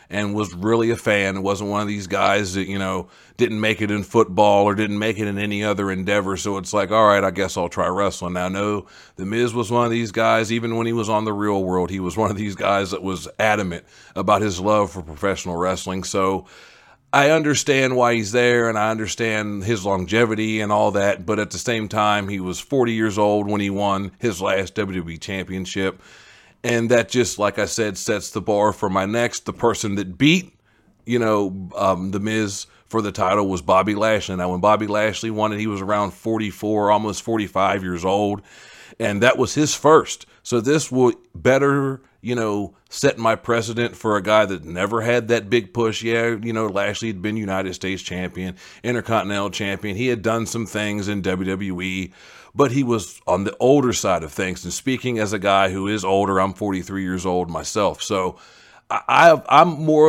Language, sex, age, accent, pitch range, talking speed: English, male, 40-59, American, 95-115 Hz, 205 wpm